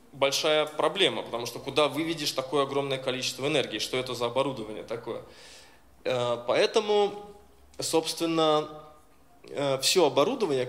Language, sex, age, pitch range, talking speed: Russian, male, 20-39, 130-165 Hz, 105 wpm